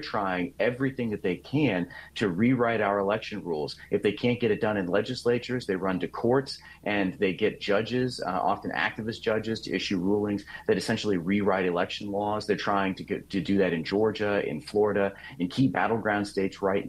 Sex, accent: male, American